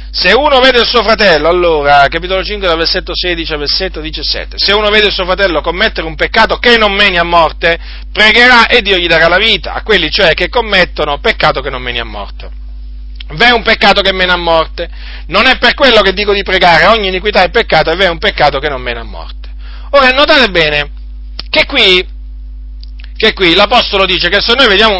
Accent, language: native, Italian